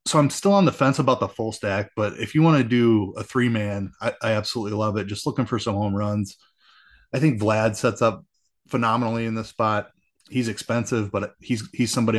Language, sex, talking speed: English, male, 215 wpm